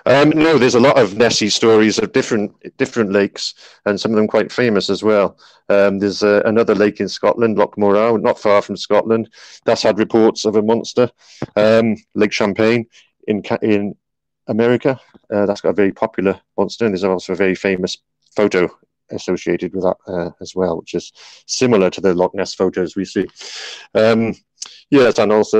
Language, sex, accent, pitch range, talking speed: English, male, British, 100-115 Hz, 185 wpm